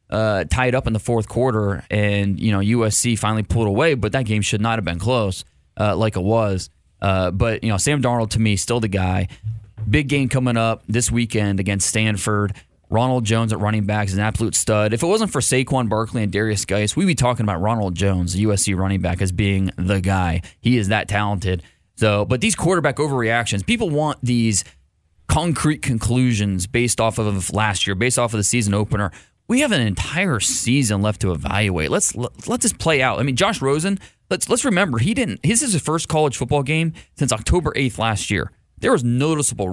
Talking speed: 210 wpm